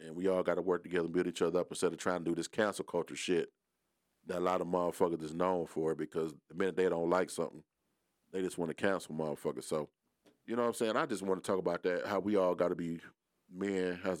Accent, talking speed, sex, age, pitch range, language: American, 250 wpm, male, 40-59, 85-95 Hz, English